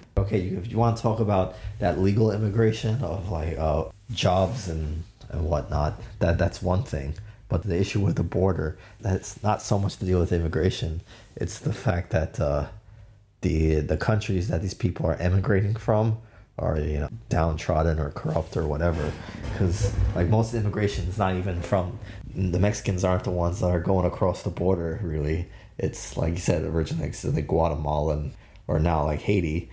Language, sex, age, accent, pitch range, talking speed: English, male, 30-49, American, 85-105 Hz, 185 wpm